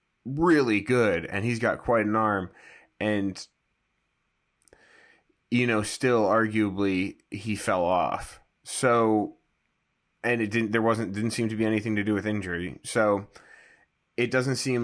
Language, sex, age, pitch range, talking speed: English, male, 30-49, 95-110 Hz, 140 wpm